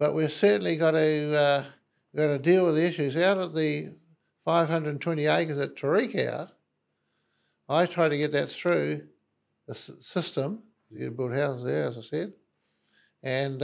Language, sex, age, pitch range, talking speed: English, male, 60-79, 135-165 Hz, 165 wpm